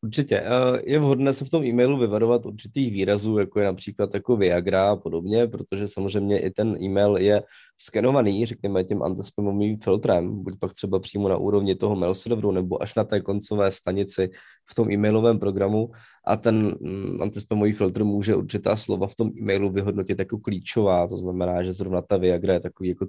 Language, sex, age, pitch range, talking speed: Czech, male, 20-39, 100-120 Hz, 180 wpm